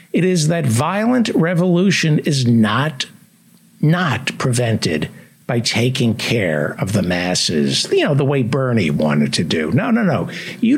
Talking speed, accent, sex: 150 wpm, American, male